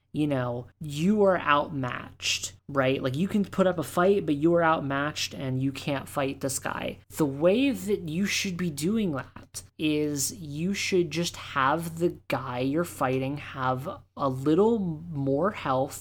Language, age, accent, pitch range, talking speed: English, 20-39, American, 130-165 Hz, 170 wpm